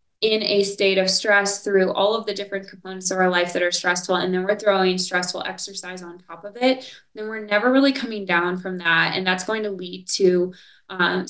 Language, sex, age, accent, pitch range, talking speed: English, female, 20-39, American, 185-220 Hz, 225 wpm